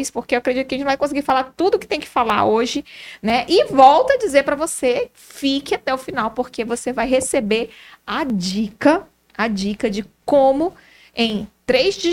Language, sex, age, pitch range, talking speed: Portuguese, female, 20-39, 215-290 Hz, 200 wpm